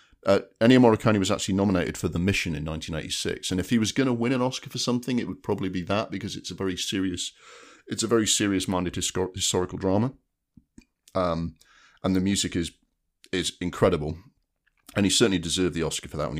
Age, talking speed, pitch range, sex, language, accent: 40-59, 200 wpm, 80-95 Hz, male, English, British